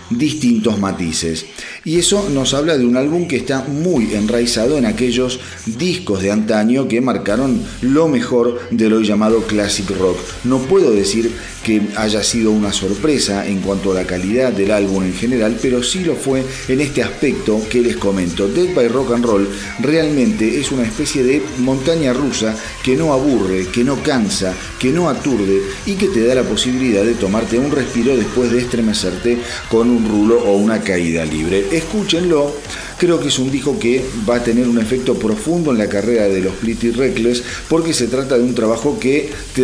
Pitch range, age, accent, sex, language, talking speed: 105-135 Hz, 40-59, Argentinian, male, Spanish, 190 wpm